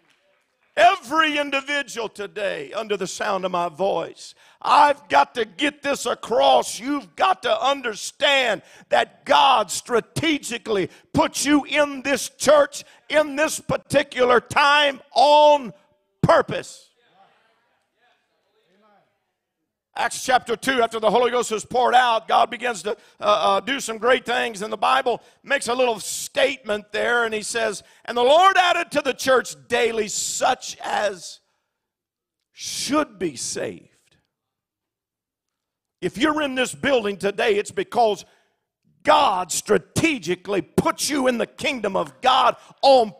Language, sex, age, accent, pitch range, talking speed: English, male, 50-69, American, 220-290 Hz, 130 wpm